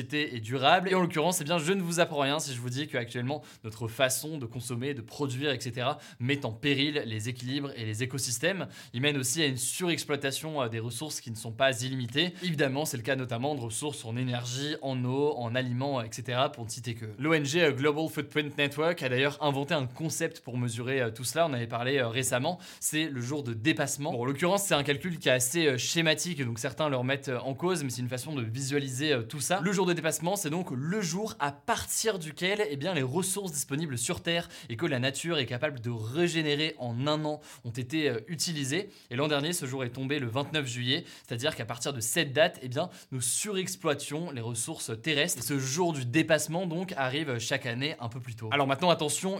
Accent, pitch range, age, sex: French, 125-160 Hz, 20-39, male